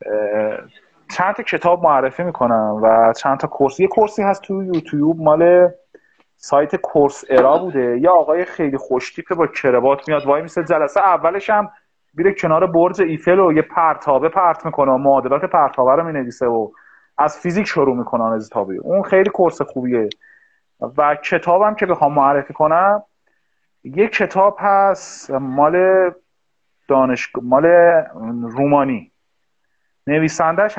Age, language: 30-49, Persian